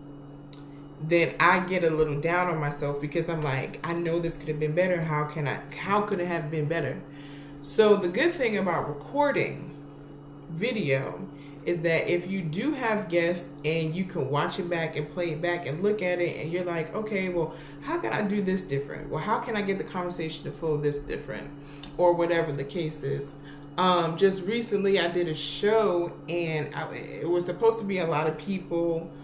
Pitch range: 145-180 Hz